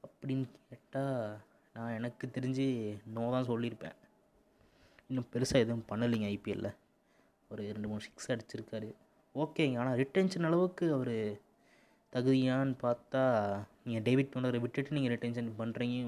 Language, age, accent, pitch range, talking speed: Tamil, 20-39, native, 110-130 Hz, 115 wpm